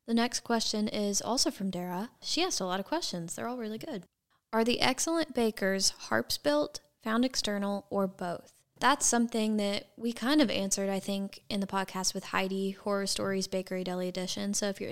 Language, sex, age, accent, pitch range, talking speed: English, female, 10-29, American, 190-215 Hz, 195 wpm